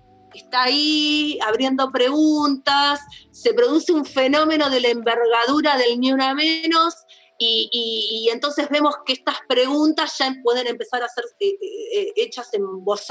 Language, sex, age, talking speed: Spanish, female, 30-49, 150 wpm